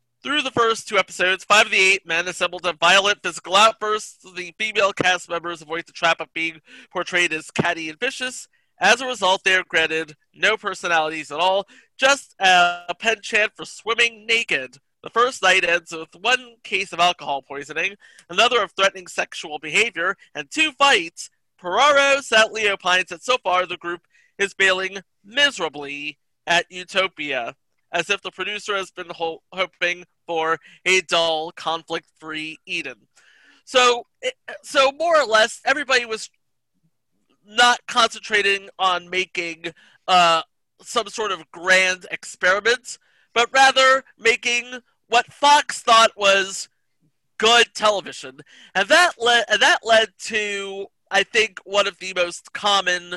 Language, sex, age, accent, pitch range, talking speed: English, male, 30-49, American, 170-230 Hz, 145 wpm